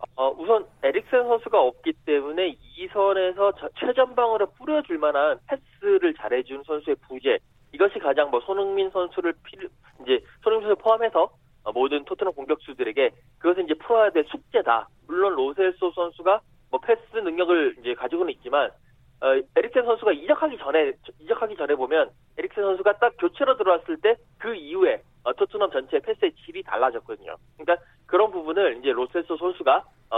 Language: Korean